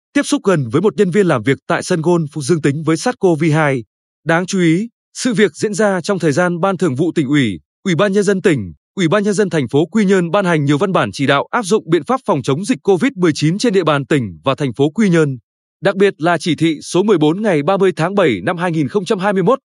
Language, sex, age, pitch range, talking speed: Vietnamese, male, 20-39, 150-205 Hz, 250 wpm